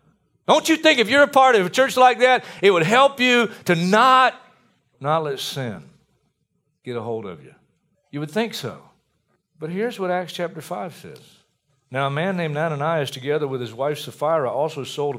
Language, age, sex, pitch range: English, 50-69, male, 125-180 Hz